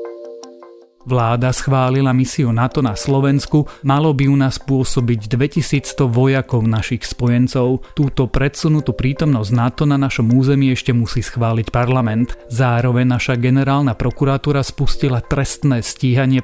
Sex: male